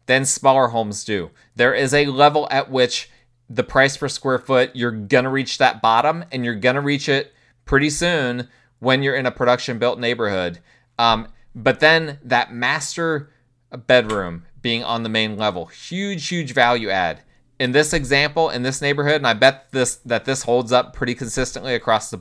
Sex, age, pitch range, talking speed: male, 20-39, 115-140 Hz, 175 wpm